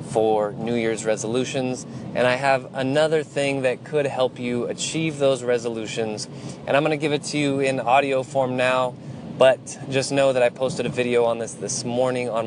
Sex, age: male, 20-39